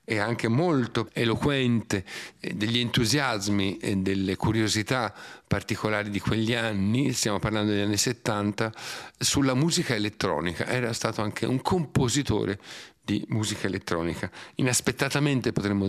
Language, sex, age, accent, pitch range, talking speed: Italian, male, 50-69, native, 105-135 Hz, 115 wpm